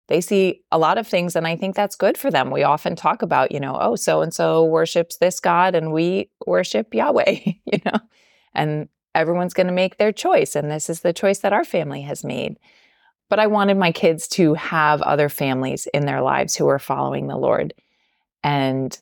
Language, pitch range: English, 145-185 Hz